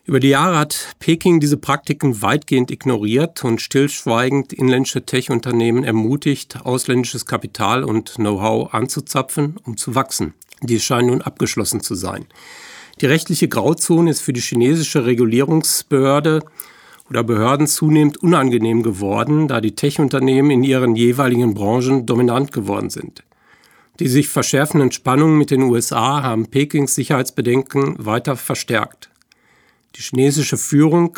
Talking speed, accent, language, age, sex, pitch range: 125 wpm, German, German, 50-69, male, 120-145 Hz